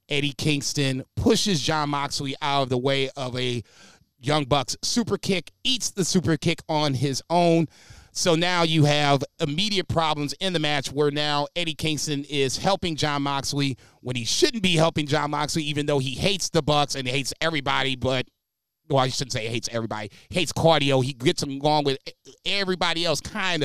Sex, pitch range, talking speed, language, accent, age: male, 140-165 Hz, 185 wpm, English, American, 30-49